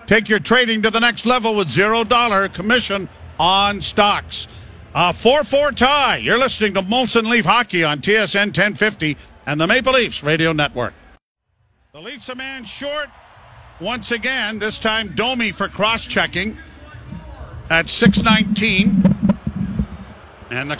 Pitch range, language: 190-225 Hz, English